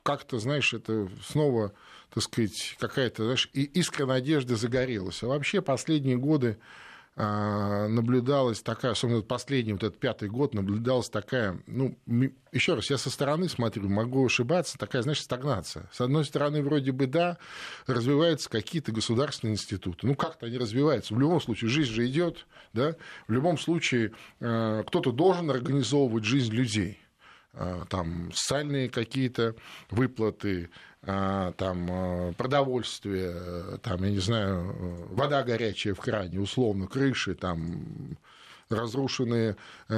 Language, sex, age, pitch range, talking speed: Russian, male, 20-39, 105-140 Hz, 125 wpm